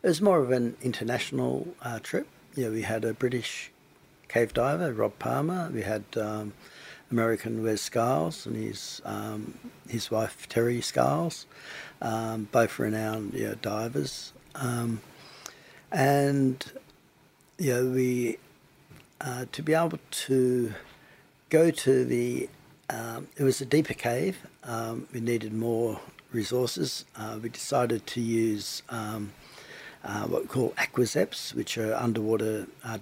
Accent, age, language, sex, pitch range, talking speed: Australian, 60-79, English, male, 110-135 Hz, 140 wpm